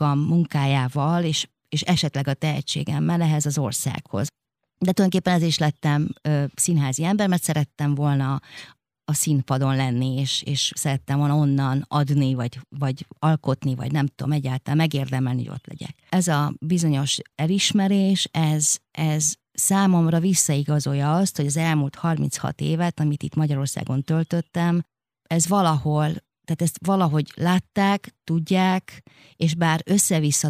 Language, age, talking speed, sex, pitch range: Hungarian, 30-49, 135 wpm, female, 145-170 Hz